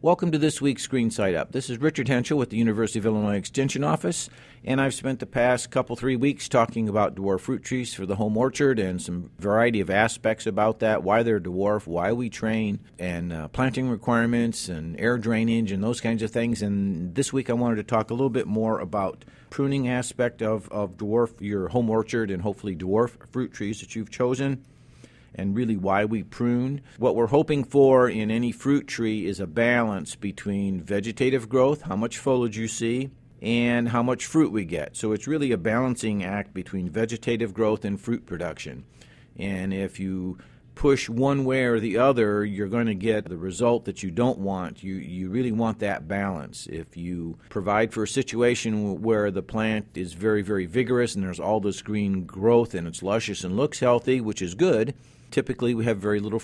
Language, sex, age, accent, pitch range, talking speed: English, male, 50-69, American, 100-120 Hz, 200 wpm